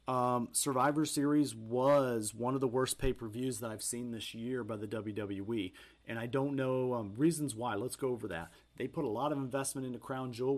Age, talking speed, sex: 40-59, 210 wpm, male